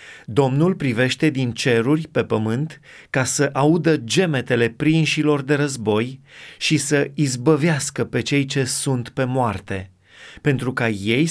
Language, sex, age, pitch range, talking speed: Romanian, male, 30-49, 115-150 Hz, 135 wpm